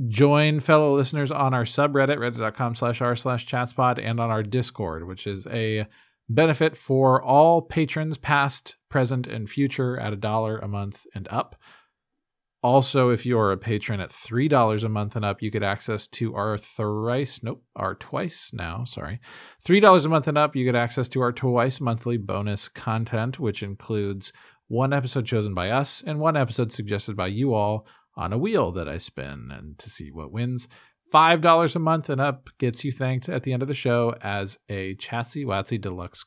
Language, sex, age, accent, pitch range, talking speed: English, male, 40-59, American, 110-140 Hz, 185 wpm